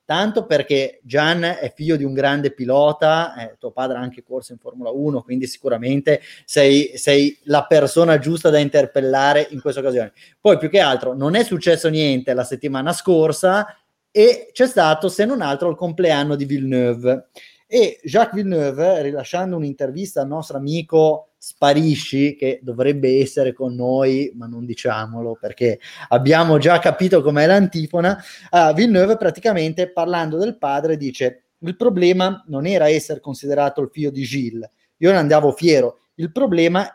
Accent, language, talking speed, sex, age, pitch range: native, Italian, 155 wpm, male, 20-39, 135-170 Hz